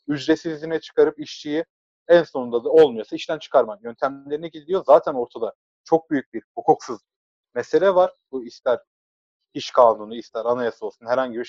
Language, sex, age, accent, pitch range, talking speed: Turkish, male, 40-59, native, 120-160 Hz, 145 wpm